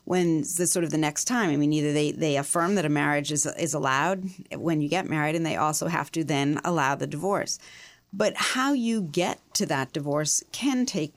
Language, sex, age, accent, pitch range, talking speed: English, female, 40-59, American, 150-185 Hz, 220 wpm